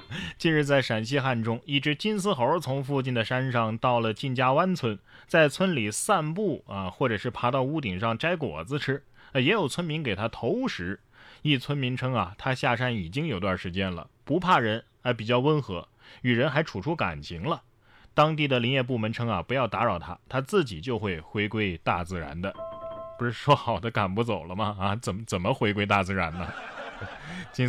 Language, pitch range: Chinese, 105-145 Hz